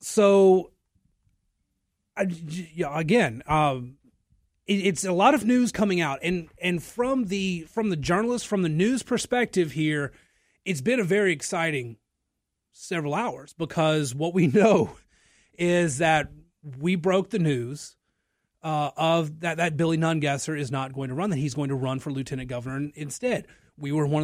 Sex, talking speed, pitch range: male, 155 wpm, 145-195 Hz